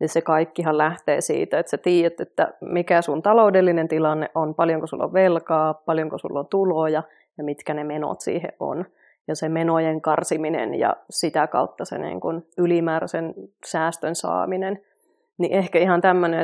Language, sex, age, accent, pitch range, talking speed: Finnish, female, 30-49, native, 155-175 Hz, 155 wpm